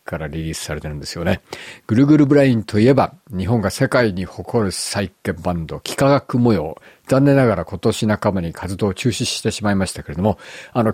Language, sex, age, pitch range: Japanese, male, 50-69, 90-125 Hz